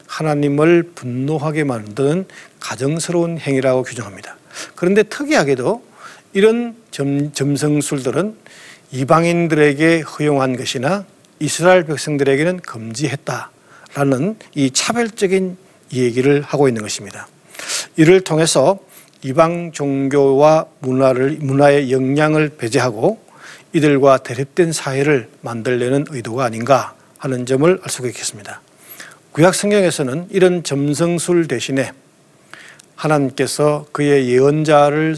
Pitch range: 130-170 Hz